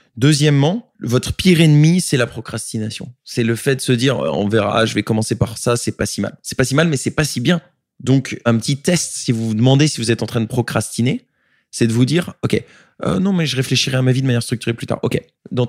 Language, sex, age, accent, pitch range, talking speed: French, male, 20-39, French, 115-150 Hz, 255 wpm